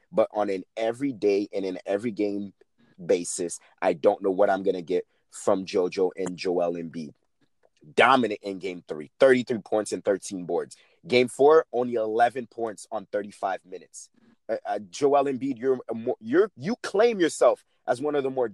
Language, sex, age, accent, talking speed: English, male, 30-49, American, 180 wpm